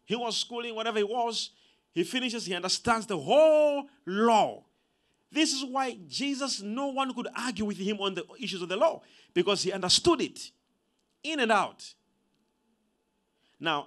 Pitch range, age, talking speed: 175-245 Hz, 50-69, 160 wpm